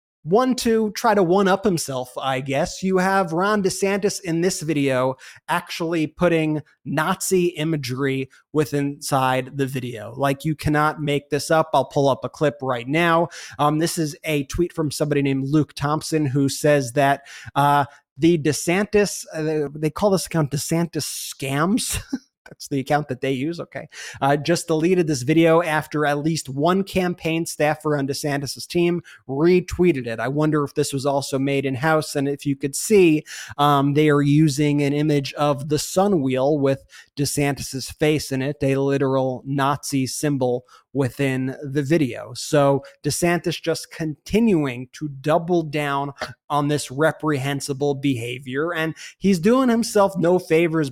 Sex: male